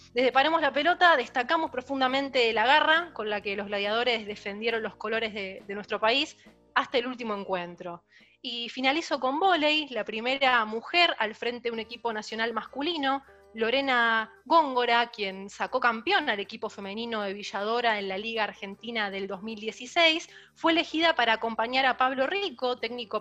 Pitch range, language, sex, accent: 220-295 Hz, Spanish, female, Argentinian